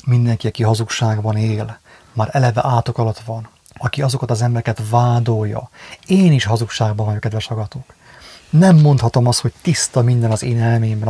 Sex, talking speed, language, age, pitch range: male, 155 wpm, English, 30-49, 110-125 Hz